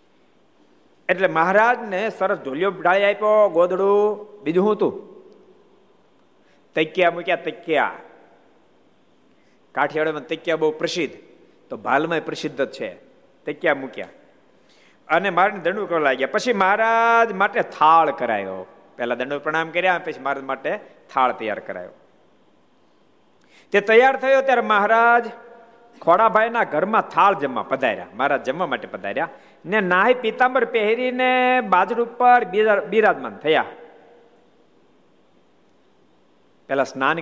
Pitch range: 160-225 Hz